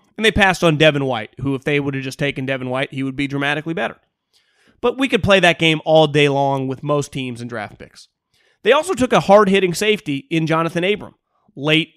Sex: male